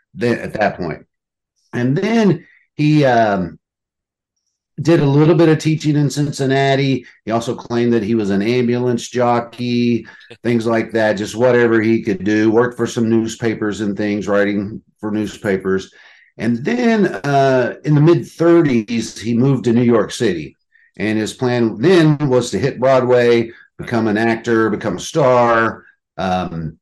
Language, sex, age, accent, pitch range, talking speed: English, male, 50-69, American, 105-130 Hz, 155 wpm